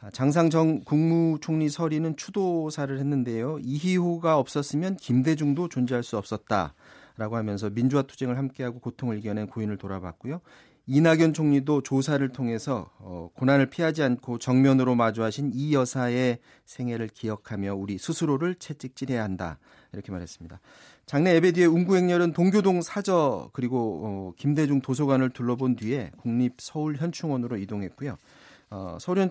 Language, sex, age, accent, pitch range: Korean, male, 30-49, native, 120-160 Hz